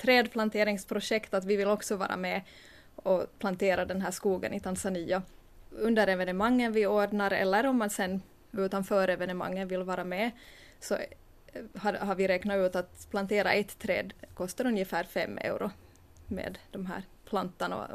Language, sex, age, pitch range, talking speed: Swedish, female, 20-39, 190-210 Hz, 145 wpm